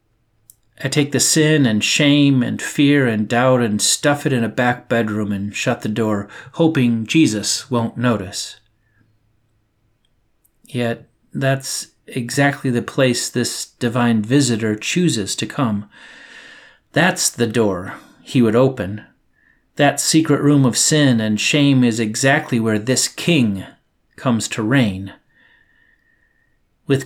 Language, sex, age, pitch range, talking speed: English, male, 40-59, 110-140 Hz, 130 wpm